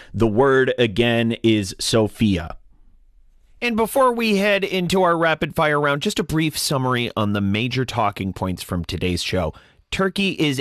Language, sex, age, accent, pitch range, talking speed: English, male, 30-49, American, 100-140 Hz, 155 wpm